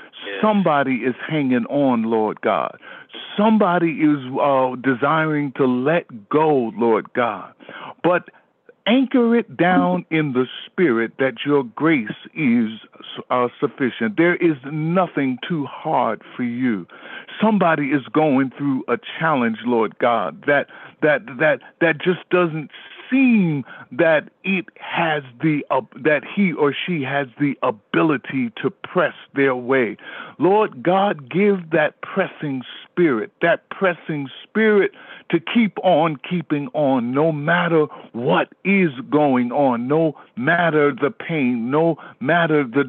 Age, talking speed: 50-69, 130 wpm